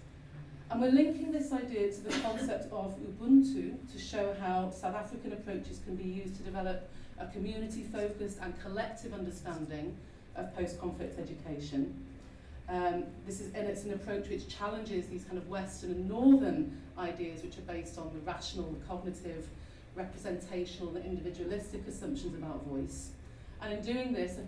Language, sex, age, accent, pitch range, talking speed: English, female, 40-59, British, 160-210 Hz, 155 wpm